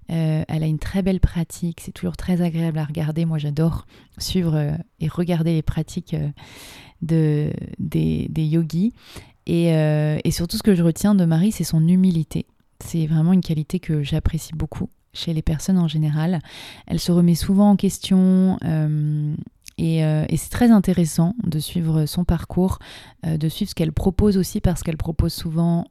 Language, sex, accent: French, female, French